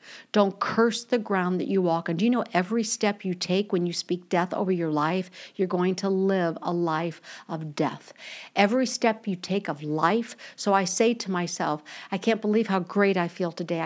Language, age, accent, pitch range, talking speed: English, 50-69, American, 170-225 Hz, 210 wpm